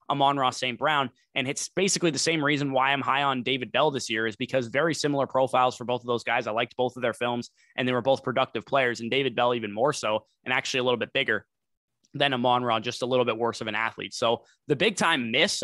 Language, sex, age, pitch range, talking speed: English, male, 20-39, 125-155 Hz, 260 wpm